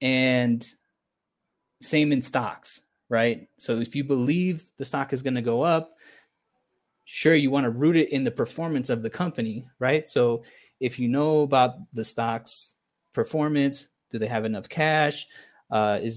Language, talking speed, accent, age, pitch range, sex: English, 165 wpm, American, 20-39, 115-155 Hz, male